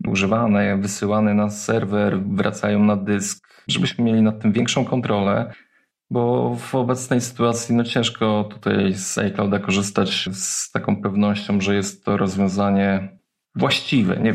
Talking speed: 130 wpm